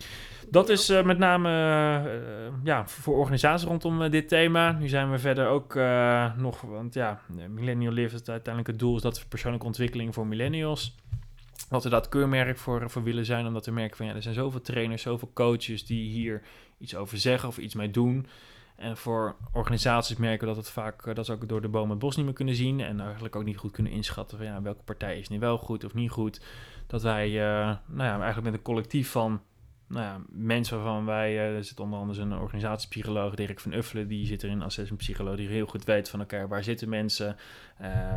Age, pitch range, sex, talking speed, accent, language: 20-39, 105-120 Hz, male, 220 wpm, Dutch, Dutch